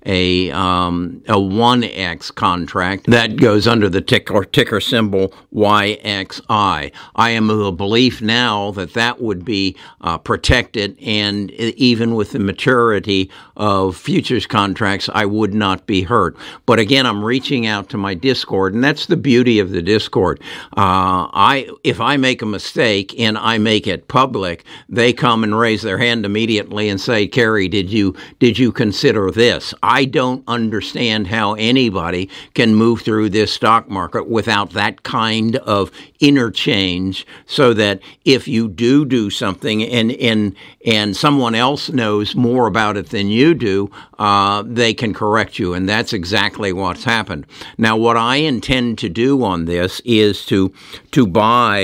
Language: English